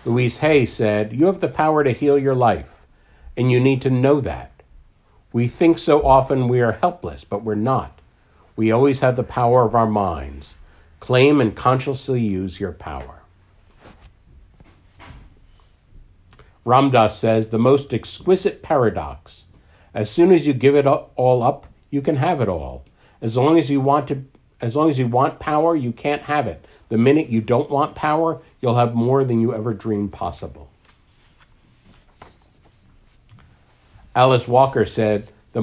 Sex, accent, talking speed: male, American, 160 wpm